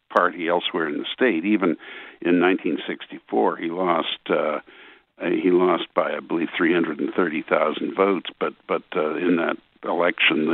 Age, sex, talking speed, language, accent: 60-79, male, 135 wpm, English, American